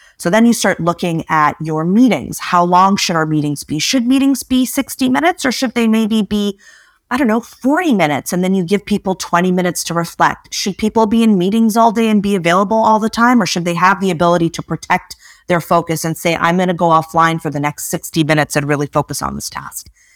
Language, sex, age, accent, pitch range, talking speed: Danish, female, 30-49, American, 155-210 Hz, 235 wpm